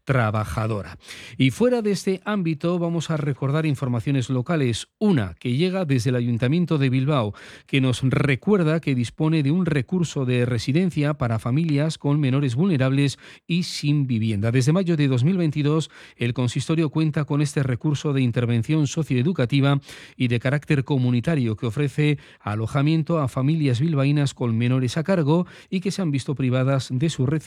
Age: 40-59